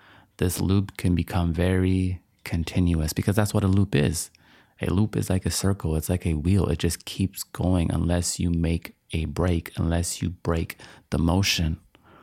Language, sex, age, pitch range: English, male, 30-49, 85-100 Hz